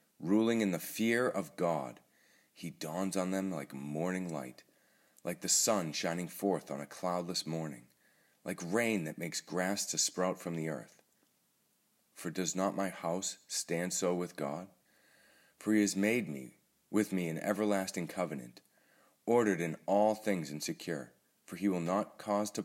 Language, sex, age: English, male, 40-59